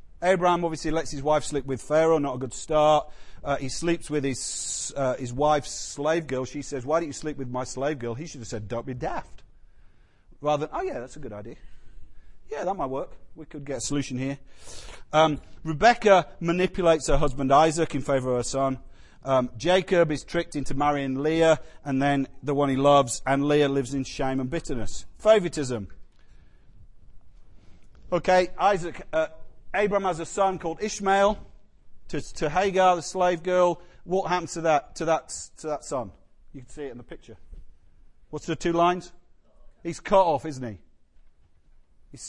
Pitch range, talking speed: 130-165 Hz, 185 wpm